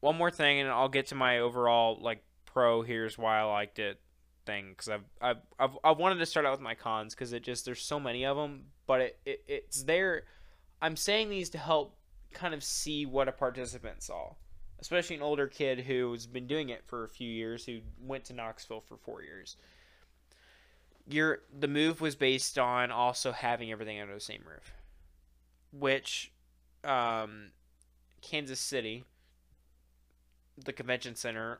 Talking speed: 175 wpm